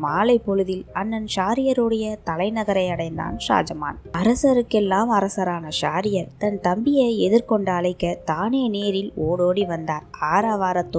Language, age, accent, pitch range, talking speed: Tamil, 20-39, native, 175-215 Hz, 100 wpm